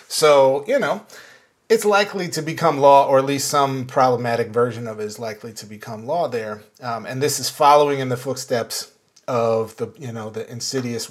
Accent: American